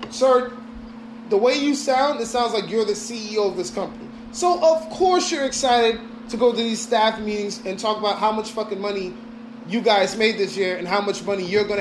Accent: American